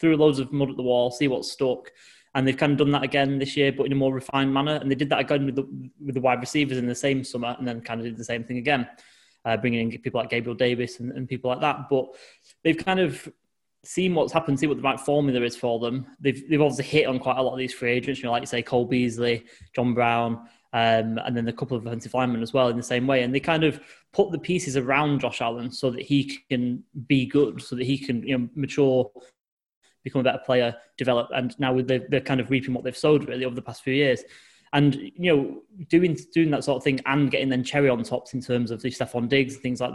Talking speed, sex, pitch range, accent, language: 265 wpm, male, 125-140 Hz, British, English